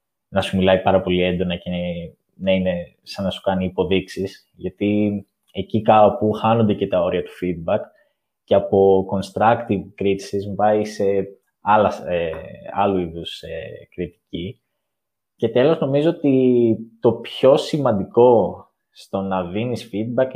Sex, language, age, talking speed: male, Greek, 20-39, 125 wpm